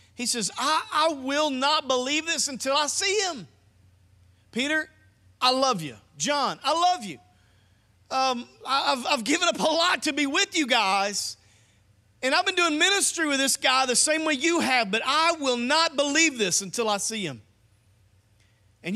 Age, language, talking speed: 40-59, English, 180 wpm